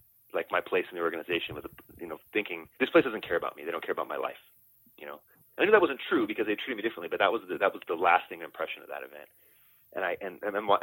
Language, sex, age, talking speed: English, male, 30-49, 290 wpm